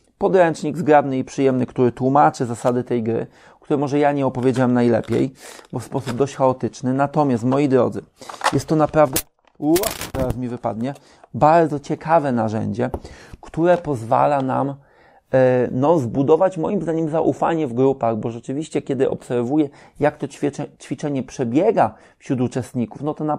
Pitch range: 125-150 Hz